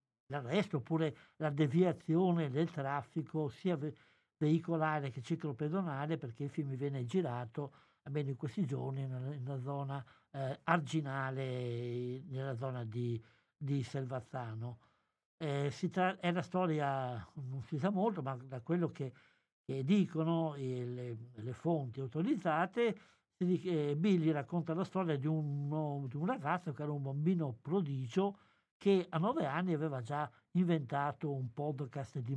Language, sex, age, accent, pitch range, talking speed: Italian, male, 60-79, native, 135-170 Hz, 135 wpm